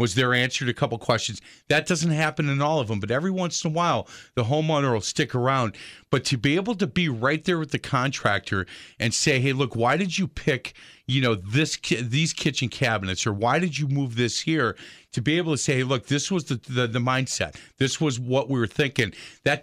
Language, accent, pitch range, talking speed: English, American, 115-150 Hz, 235 wpm